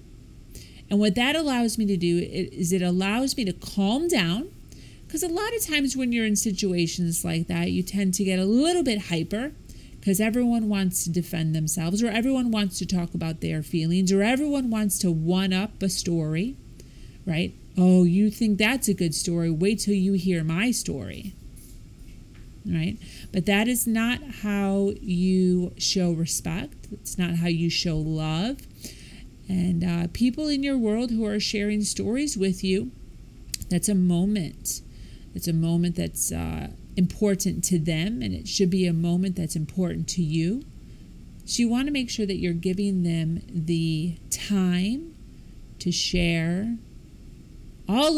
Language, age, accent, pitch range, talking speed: English, 30-49, American, 170-220 Hz, 165 wpm